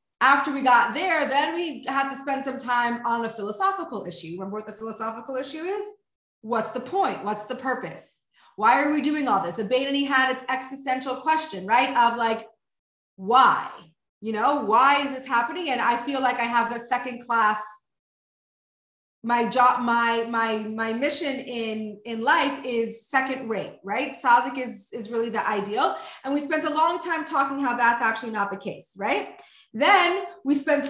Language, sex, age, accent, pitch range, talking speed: English, female, 30-49, American, 240-320 Hz, 180 wpm